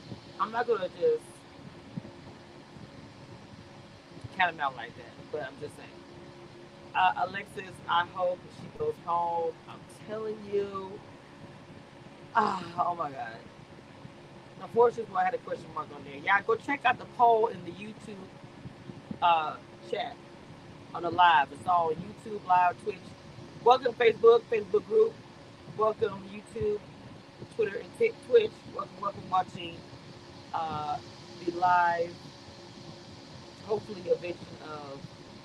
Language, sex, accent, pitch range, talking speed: English, female, American, 145-235 Hz, 120 wpm